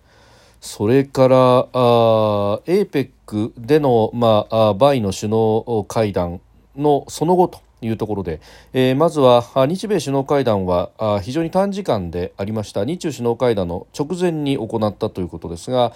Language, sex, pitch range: Japanese, male, 100-145 Hz